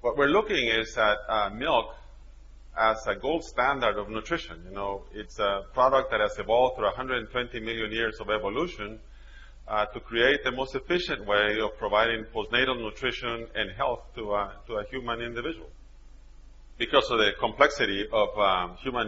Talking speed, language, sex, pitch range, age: 165 wpm, English, male, 95-115 Hz, 30-49